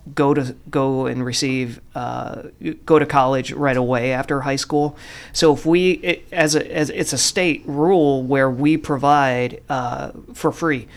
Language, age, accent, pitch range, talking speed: English, 40-59, American, 135-155 Hz, 170 wpm